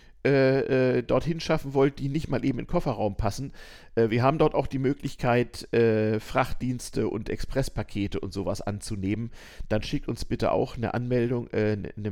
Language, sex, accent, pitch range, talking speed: German, male, German, 95-125 Hz, 155 wpm